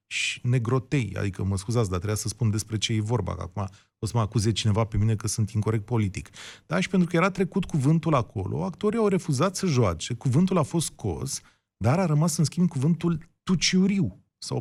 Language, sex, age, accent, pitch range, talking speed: Romanian, male, 30-49, native, 110-180 Hz, 210 wpm